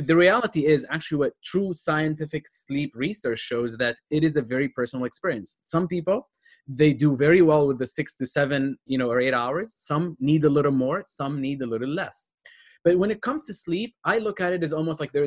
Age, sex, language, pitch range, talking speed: 20-39, male, English, 130-165 Hz, 225 wpm